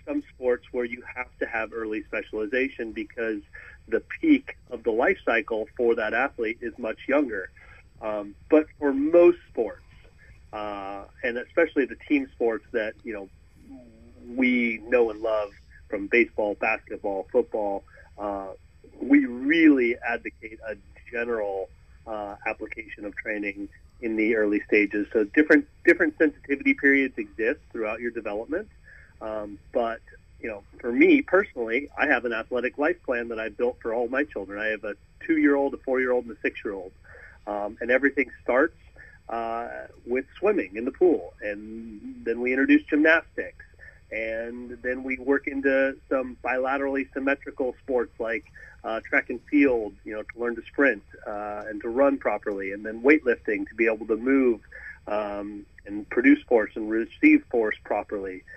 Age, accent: 30-49, American